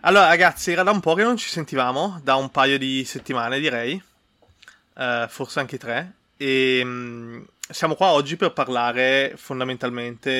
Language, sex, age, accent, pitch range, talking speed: Italian, male, 20-39, native, 115-140 Hz, 150 wpm